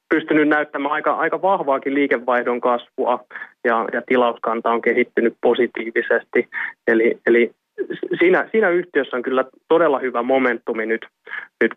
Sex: male